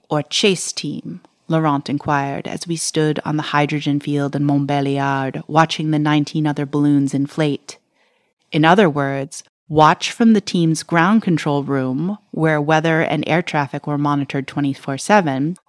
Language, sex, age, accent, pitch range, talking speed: English, female, 30-49, American, 145-175 Hz, 150 wpm